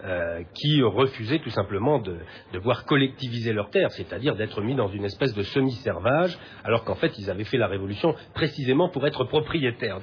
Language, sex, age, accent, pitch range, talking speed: French, male, 40-59, French, 110-150 Hz, 185 wpm